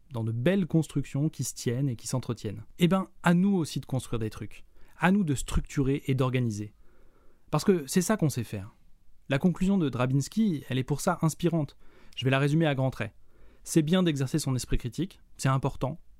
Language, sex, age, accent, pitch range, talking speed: French, male, 20-39, French, 120-155 Hz, 210 wpm